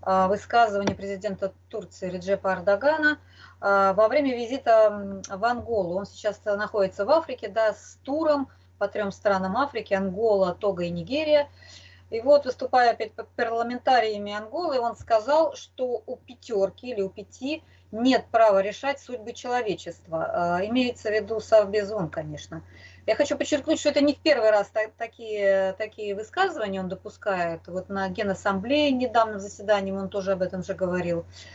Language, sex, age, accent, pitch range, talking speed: Russian, female, 20-39, native, 190-250 Hz, 145 wpm